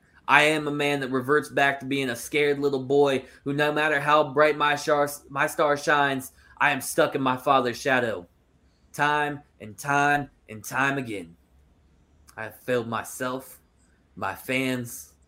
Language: English